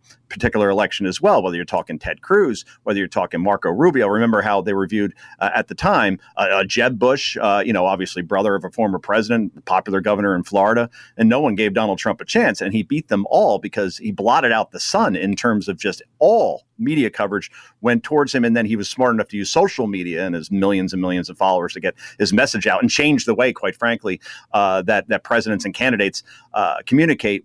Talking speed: 225 wpm